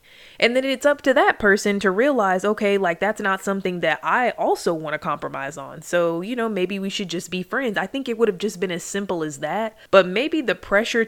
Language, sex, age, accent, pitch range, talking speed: English, female, 20-39, American, 165-215 Hz, 245 wpm